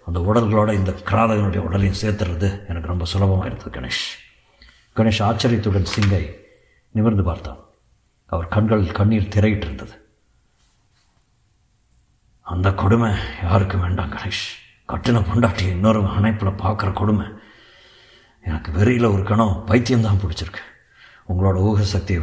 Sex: male